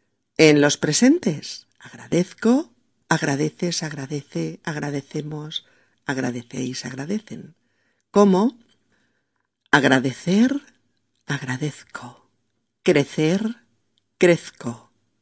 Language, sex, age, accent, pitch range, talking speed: Spanish, female, 40-59, Spanish, 125-170 Hz, 55 wpm